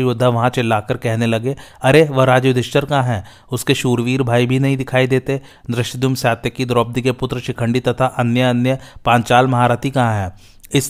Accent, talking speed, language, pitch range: native, 170 wpm, Hindi, 115-130 Hz